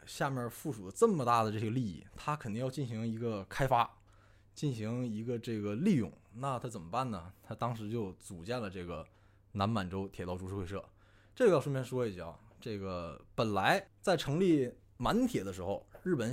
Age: 20-39